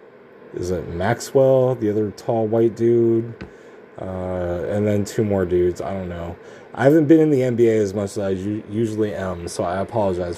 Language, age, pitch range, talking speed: English, 30-49, 90-110 Hz, 185 wpm